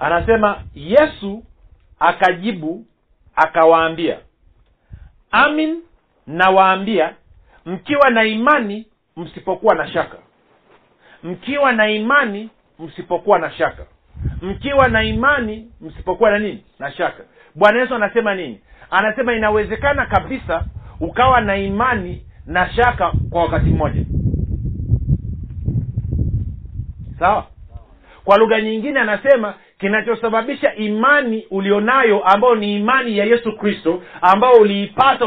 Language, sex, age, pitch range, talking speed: Swahili, male, 50-69, 185-245 Hz, 95 wpm